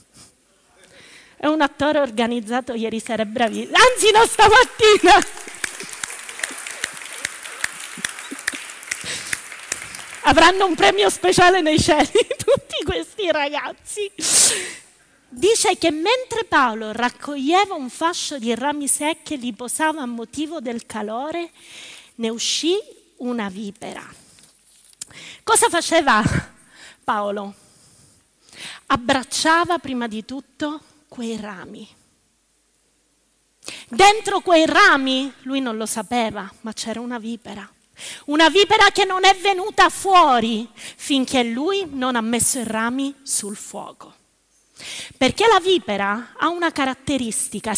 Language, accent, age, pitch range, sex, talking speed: Italian, native, 30-49, 235-370 Hz, female, 105 wpm